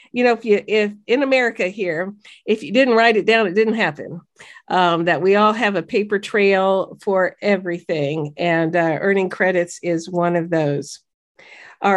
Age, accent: 50-69, American